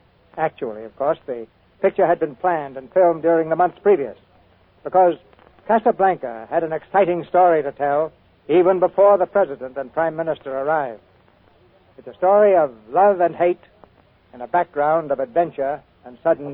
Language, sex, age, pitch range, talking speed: English, male, 60-79, 125-180 Hz, 160 wpm